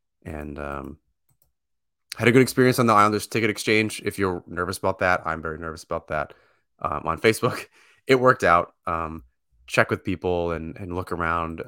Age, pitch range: 20-39, 80-105 Hz